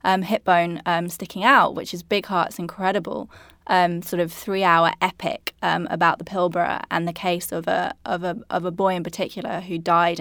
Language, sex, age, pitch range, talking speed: English, female, 10-29, 175-200 Hz, 200 wpm